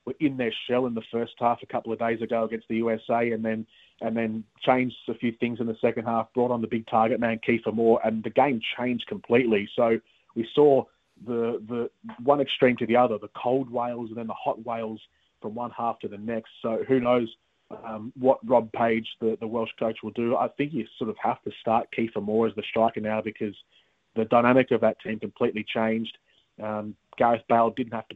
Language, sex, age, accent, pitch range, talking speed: English, male, 30-49, Australian, 110-120 Hz, 225 wpm